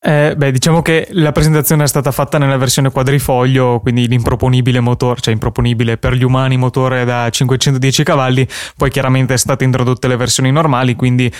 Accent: native